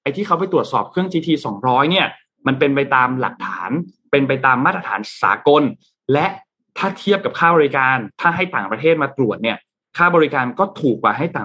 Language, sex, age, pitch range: Thai, male, 20-39, 130-175 Hz